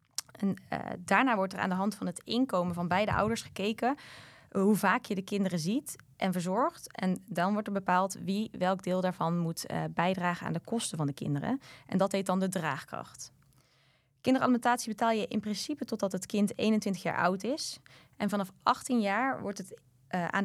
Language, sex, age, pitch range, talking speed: Dutch, female, 20-39, 175-225 Hz, 195 wpm